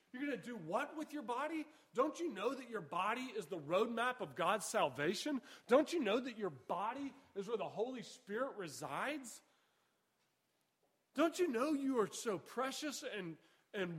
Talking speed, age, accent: 175 wpm, 40-59, American